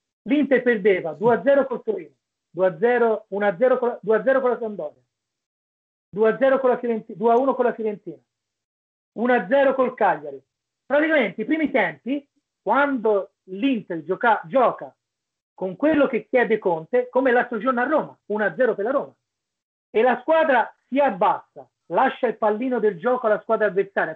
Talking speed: 135 wpm